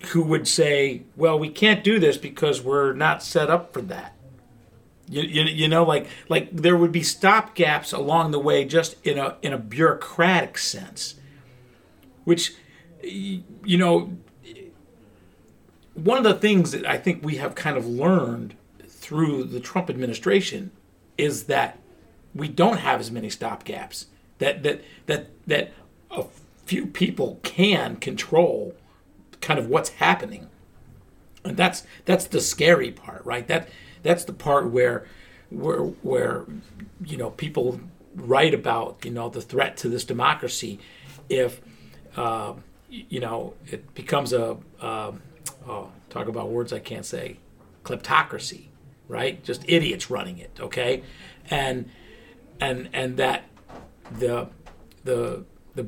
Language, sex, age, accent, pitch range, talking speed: English, male, 50-69, American, 125-175 Hz, 140 wpm